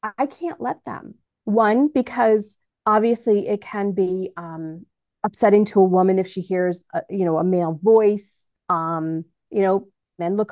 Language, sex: English, female